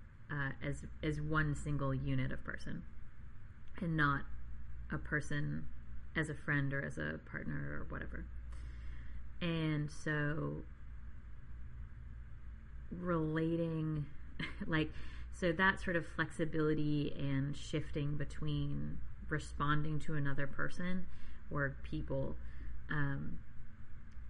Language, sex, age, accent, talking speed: English, female, 30-49, American, 100 wpm